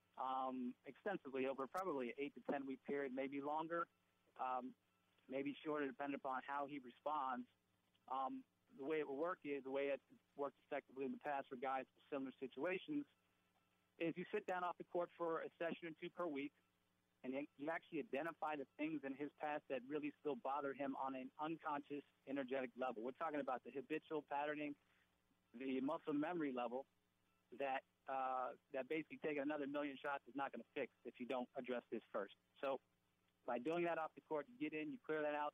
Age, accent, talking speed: 40-59, American, 195 wpm